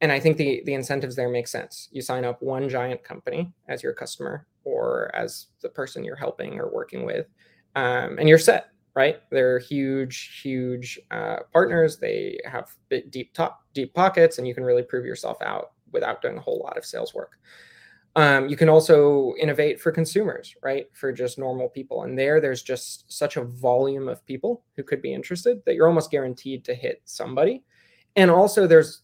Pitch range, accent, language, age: 130-185 Hz, American, English, 20-39